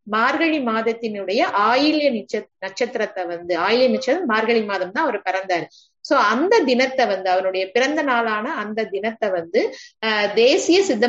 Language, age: English, 30-49